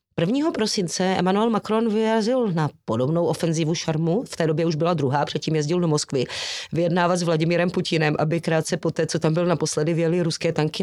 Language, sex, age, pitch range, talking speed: Czech, female, 30-49, 160-195 Hz, 190 wpm